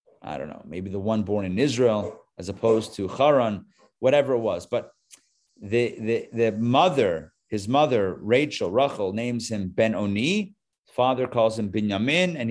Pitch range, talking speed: 105-130 Hz, 165 wpm